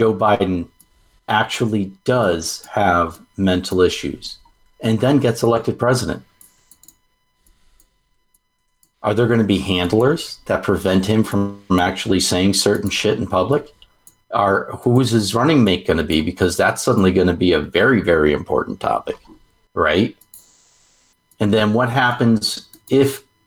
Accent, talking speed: American, 140 wpm